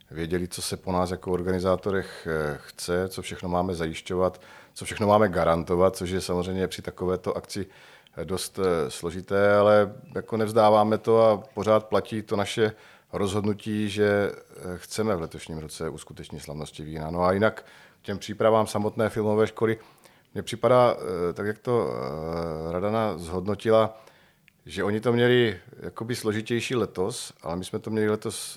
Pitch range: 90-110 Hz